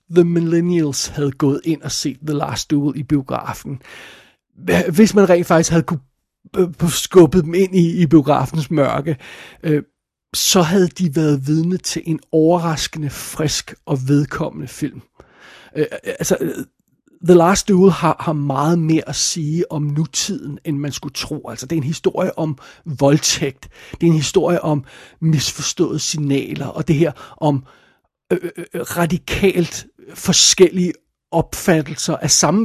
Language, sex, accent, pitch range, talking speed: Danish, male, native, 150-185 Hz, 140 wpm